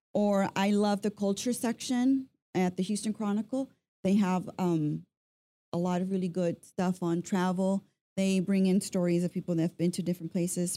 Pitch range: 170-205 Hz